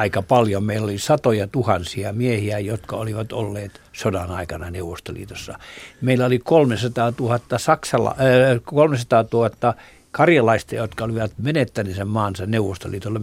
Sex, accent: male, native